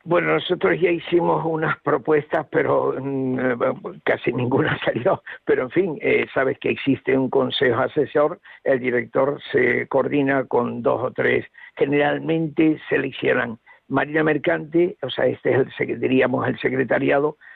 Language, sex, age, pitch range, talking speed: Spanish, male, 60-79, 145-235 Hz, 145 wpm